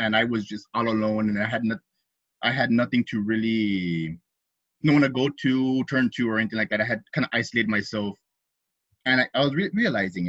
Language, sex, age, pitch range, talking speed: English, male, 20-39, 105-130 Hz, 220 wpm